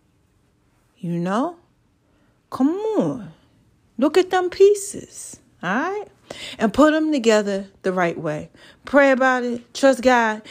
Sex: female